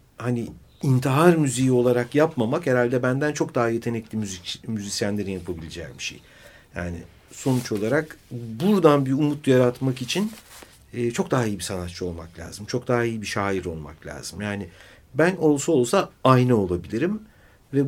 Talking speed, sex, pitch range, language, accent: 150 wpm, male, 100-145 Hz, Turkish, native